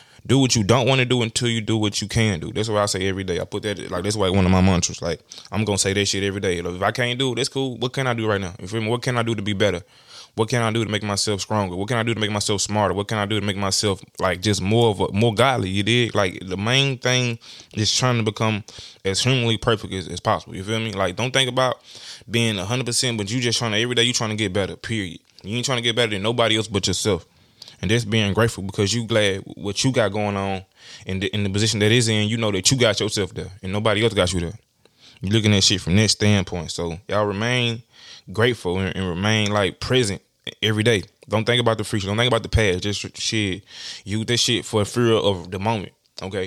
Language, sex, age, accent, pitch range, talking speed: English, male, 20-39, American, 100-115 Hz, 275 wpm